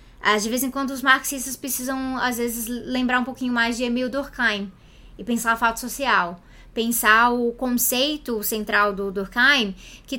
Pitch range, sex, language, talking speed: 220-275 Hz, female, Portuguese, 165 wpm